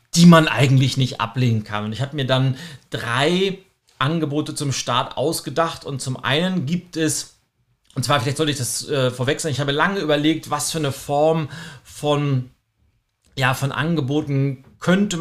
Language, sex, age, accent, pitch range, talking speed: German, male, 40-59, German, 130-160 Hz, 165 wpm